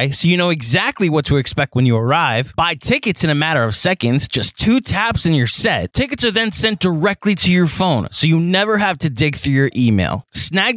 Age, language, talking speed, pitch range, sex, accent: 30-49, English, 230 wpm, 140-220 Hz, male, American